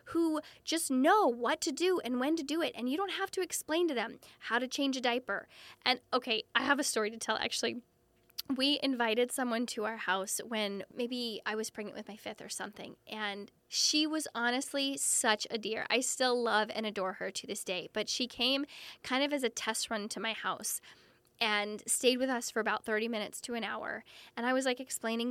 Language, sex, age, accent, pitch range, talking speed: English, female, 10-29, American, 225-305 Hz, 220 wpm